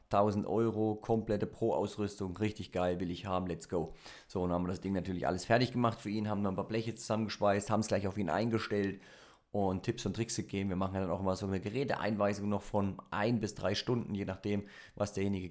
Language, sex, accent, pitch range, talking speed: German, male, German, 100-120 Hz, 225 wpm